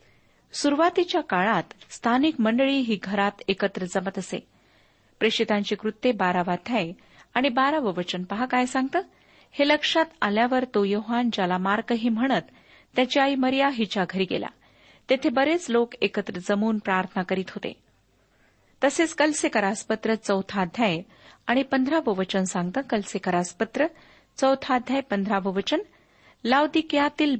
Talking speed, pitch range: 115 wpm, 195-265 Hz